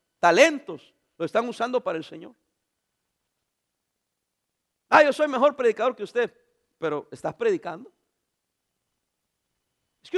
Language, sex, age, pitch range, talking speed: English, male, 50-69, 265-355 Hz, 110 wpm